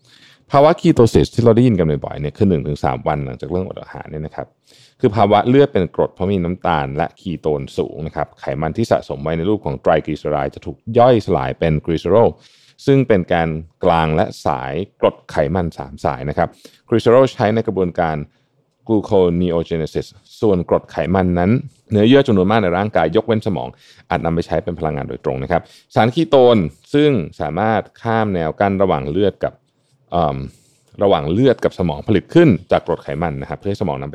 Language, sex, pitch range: Thai, male, 85-125 Hz